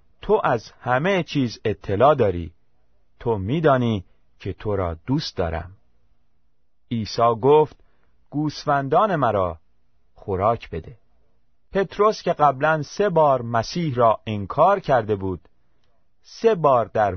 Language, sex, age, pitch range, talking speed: Persian, male, 30-49, 90-145 Hz, 110 wpm